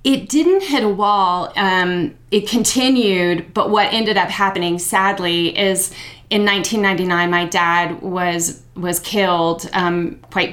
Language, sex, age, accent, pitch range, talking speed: English, female, 30-49, American, 175-200 Hz, 135 wpm